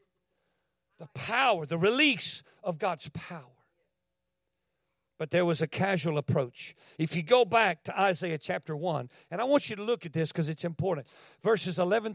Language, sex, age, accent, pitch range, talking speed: English, male, 50-69, American, 155-200 Hz, 170 wpm